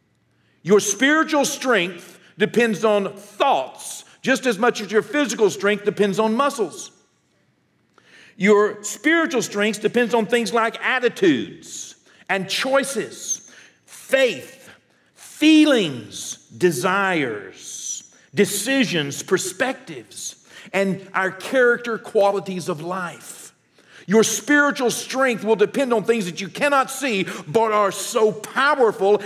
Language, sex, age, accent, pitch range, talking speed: English, male, 50-69, American, 200-260 Hz, 105 wpm